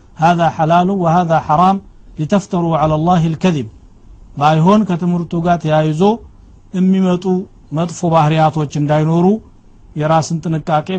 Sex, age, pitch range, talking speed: male, 60-79, 145-170 Hz, 115 wpm